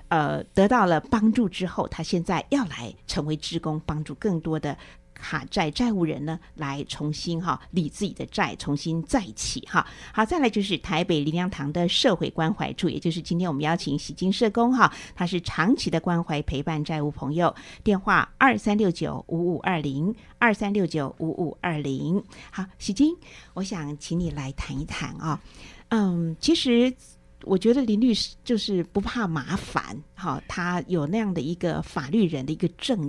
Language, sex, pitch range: Chinese, female, 160-210 Hz